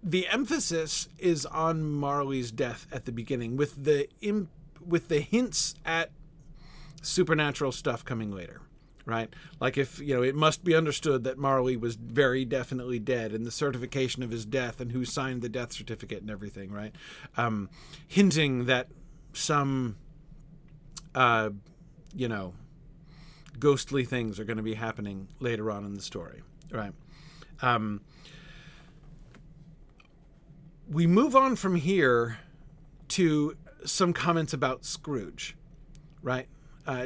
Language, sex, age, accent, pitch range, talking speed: English, male, 40-59, American, 125-160 Hz, 130 wpm